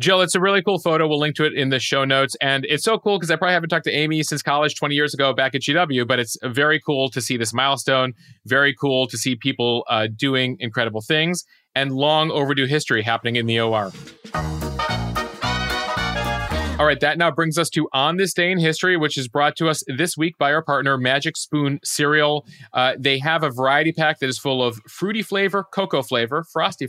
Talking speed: 220 wpm